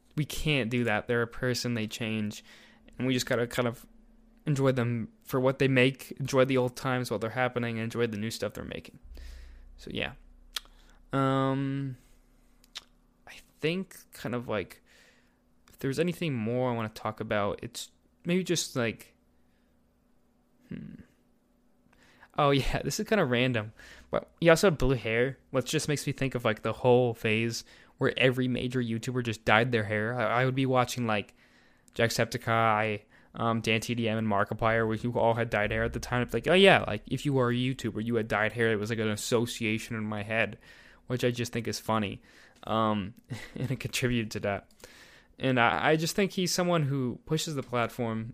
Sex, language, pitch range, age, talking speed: male, English, 110-130 Hz, 20-39, 195 wpm